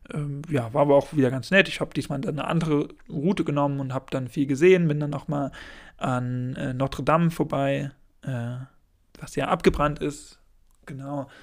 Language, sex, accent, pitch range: German, male, German, 135-155 Hz